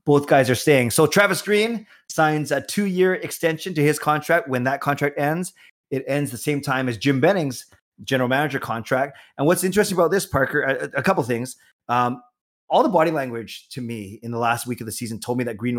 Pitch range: 120-150 Hz